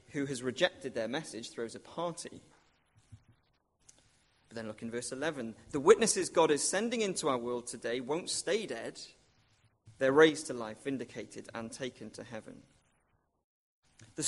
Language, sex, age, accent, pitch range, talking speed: English, male, 30-49, British, 115-175 Hz, 150 wpm